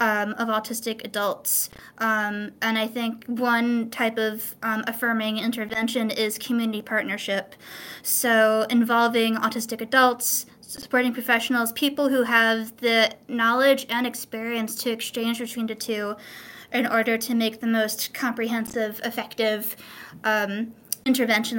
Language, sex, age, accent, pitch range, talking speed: English, female, 20-39, American, 220-240 Hz, 125 wpm